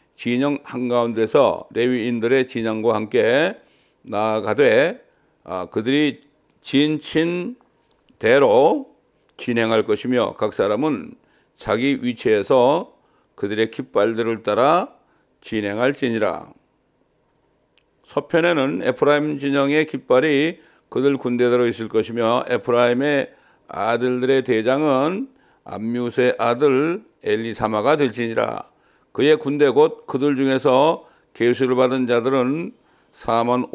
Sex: male